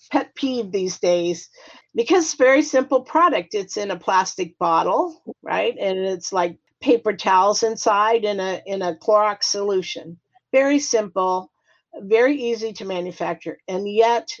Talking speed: 150 wpm